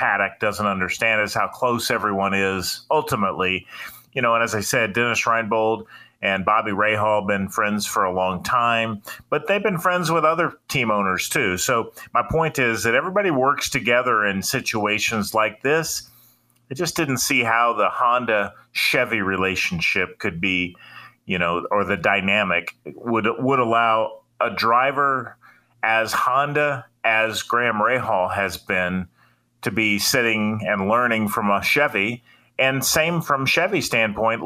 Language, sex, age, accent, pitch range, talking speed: English, male, 30-49, American, 105-130 Hz, 155 wpm